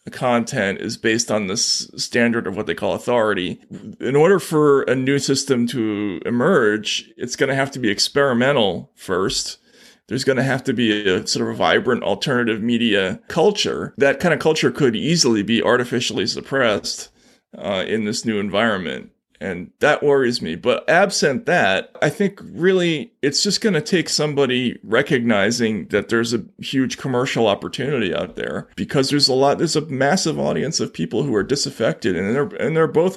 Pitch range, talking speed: 120-170 Hz, 180 wpm